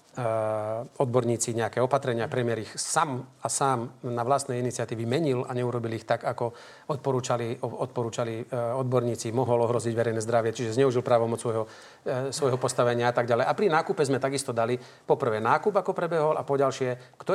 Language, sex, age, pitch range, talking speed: Slovak, male, 40-59, 120-140 Hz, 160 wpm